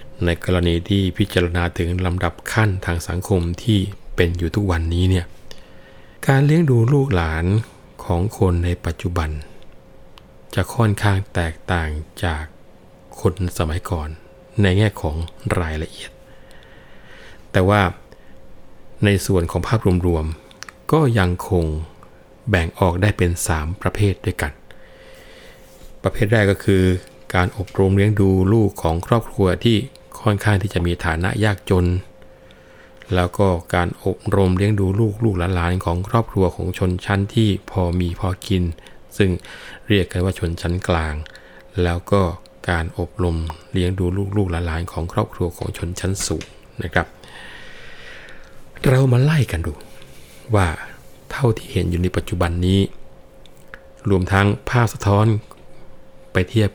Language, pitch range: Thai, 85-100 Hz